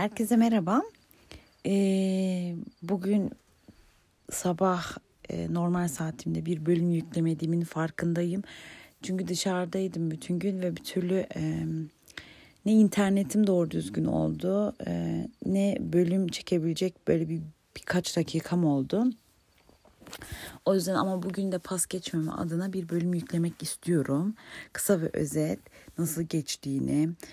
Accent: native